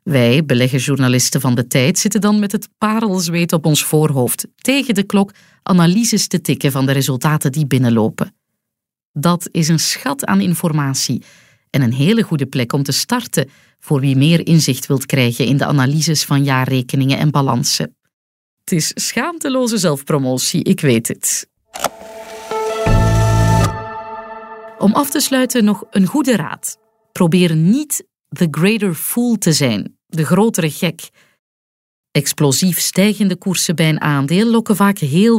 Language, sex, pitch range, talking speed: Dutch, female, 135-200 Hz, 145 wpm